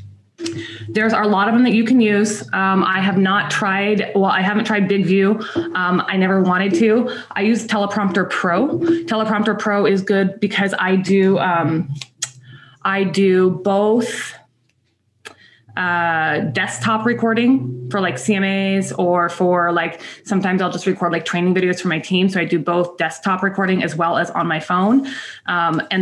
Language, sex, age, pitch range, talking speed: English, female, 20-39, 175-220 Hz, 170 wpm